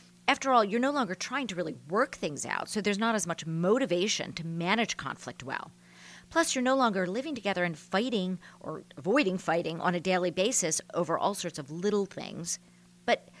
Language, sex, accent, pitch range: English, female, American, 155-220 Hz